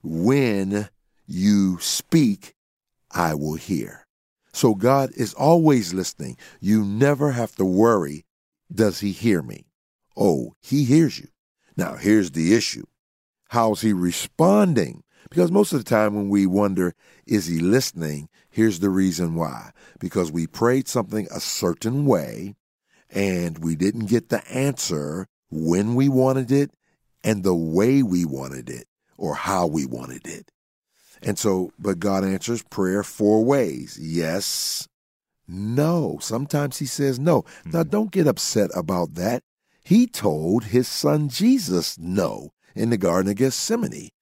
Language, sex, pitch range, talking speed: English, male, 95-135 Hz, 145 wpm